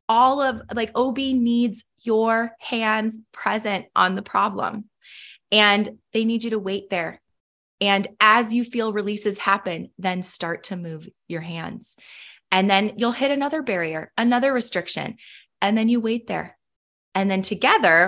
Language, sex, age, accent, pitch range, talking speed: English, female, 20-39, American, 175-230 Hz, 155 wpm